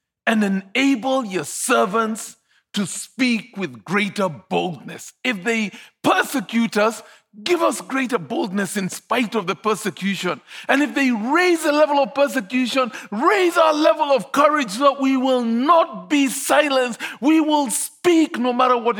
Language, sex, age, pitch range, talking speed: English, male, 50-69, 225-275 Hz, 150 wpm